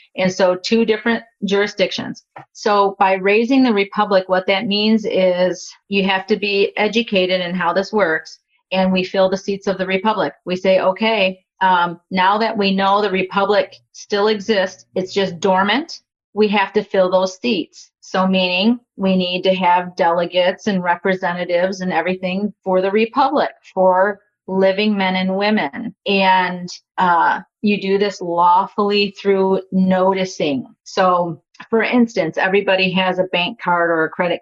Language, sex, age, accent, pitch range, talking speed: English, female, 40-59, American, 185-210 Hz, 155 wpm